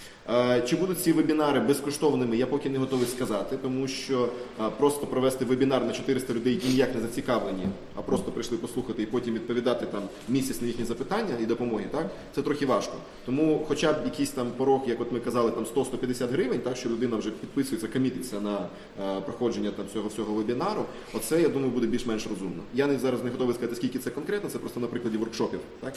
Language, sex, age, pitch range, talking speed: Ukrainian, male, 20-39, 115-130 Hz, 200 wpm